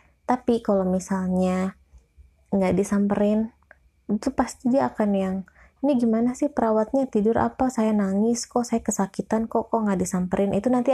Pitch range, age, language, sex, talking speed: 180-220 Hz, 20-39, Indonesian, female, 150 wpm